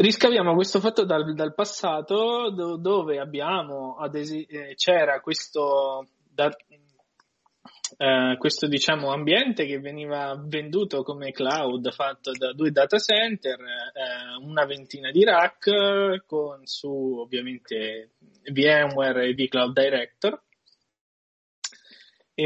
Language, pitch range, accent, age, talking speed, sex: Italian, 130-170 Hz, native, 20-39, 110 wpm, male